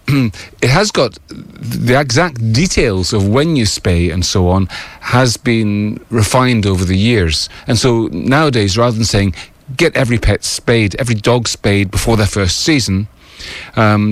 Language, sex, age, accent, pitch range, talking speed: English, male, 40-59, British, 95-120 Hz, 155 wpm